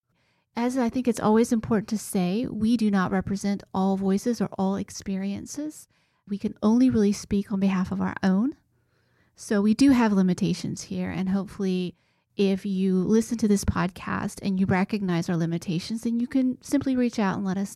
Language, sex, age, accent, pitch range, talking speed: English, female, 30-49, American, 185-230 Hz, 185 wpm